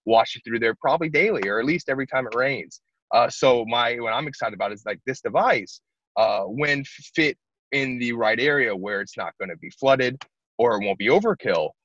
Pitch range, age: 110-145 Hz, 20-39